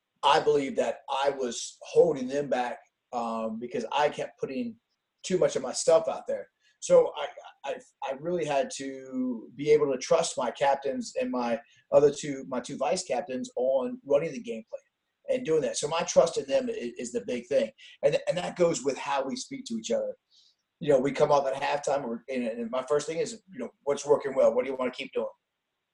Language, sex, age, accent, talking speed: English, male, 30-49, American, 215 wpm